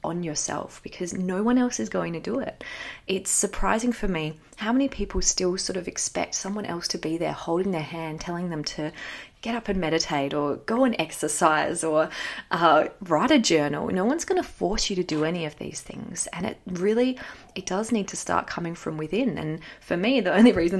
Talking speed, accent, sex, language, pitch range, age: 215 wpm, Australian, female, English, 150-190 Hz, 20-39